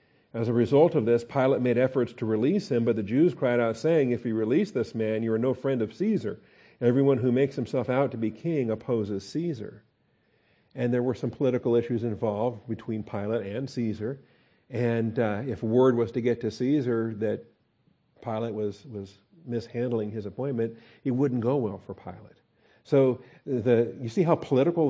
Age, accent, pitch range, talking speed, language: 50-69, American, 110-130 Hz, 185 wpm, English